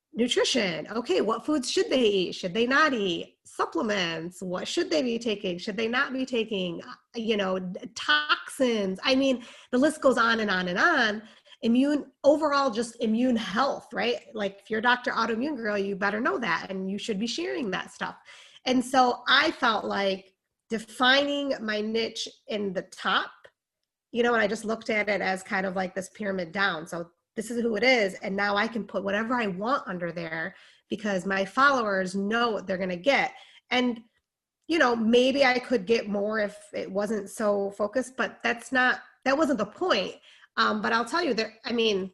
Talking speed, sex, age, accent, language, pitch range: 195 wpm, female, 30-49, American, English, 200-260 Hz